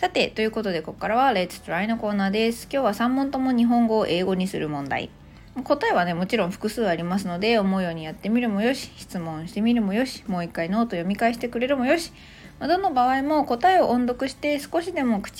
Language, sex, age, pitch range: Japanese, female, 20-39, 185-265 Hz